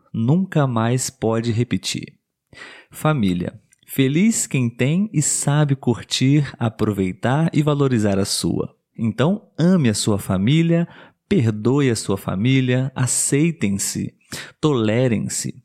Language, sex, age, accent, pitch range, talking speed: Portuguese, male, 40-59, Brazilian, 115-160 Hz, 105 wpm